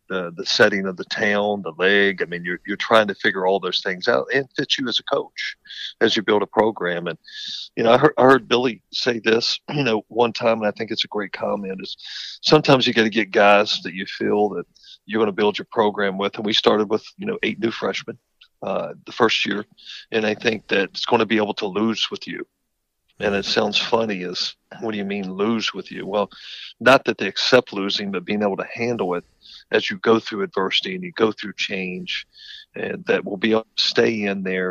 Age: 50-69